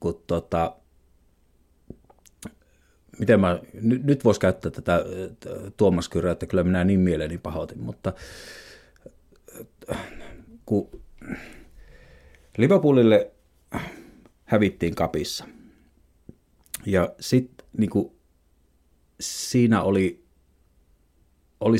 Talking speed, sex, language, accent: 75 wpm, male, Finnish, native